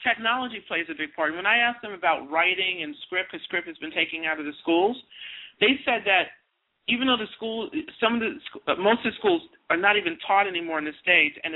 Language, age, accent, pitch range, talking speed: English, 50-69, American, 185-235 Hz, 235 wpm